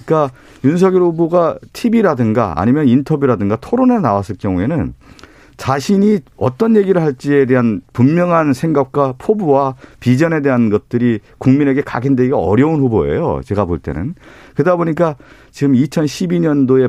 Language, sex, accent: Korean, male, native